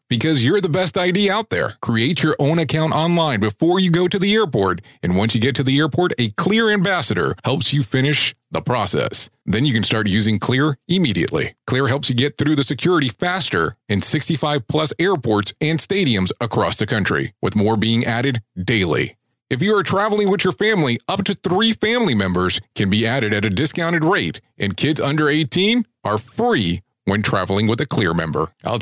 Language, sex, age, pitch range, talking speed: English, male, 40-59, 110-165 Hz, 195 wpm